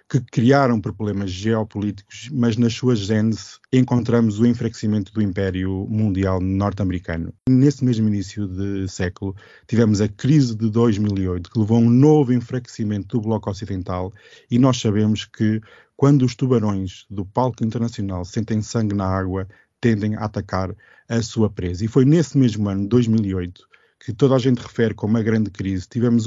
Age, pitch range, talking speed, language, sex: 20-39, 100-120 Hz, 160 wpm, Portuguese, male